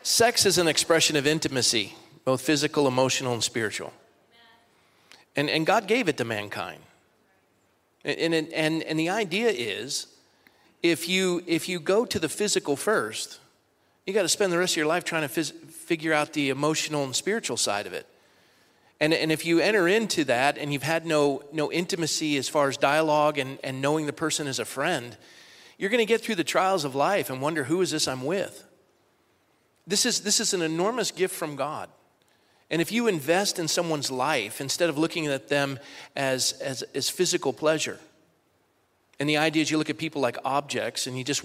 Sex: male